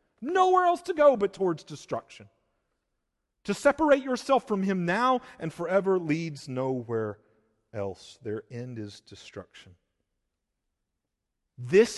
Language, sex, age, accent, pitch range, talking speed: English, male, 40-59, American, 100-150 Hz, 115 wpm